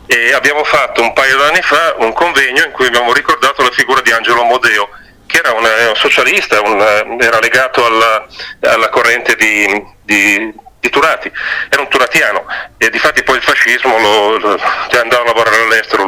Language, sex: Italian, male